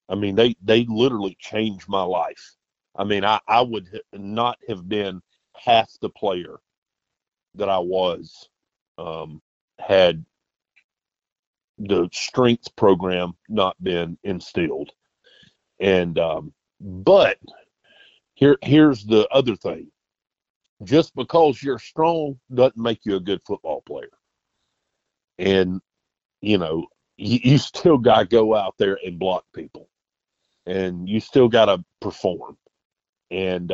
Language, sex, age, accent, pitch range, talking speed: English, male, 50-69, American, 95-135 Hz, 125 wpm